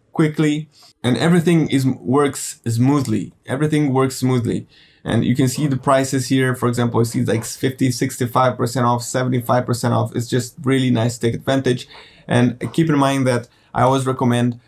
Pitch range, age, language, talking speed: 120-140 Hz, 20-39, English, 160 wpm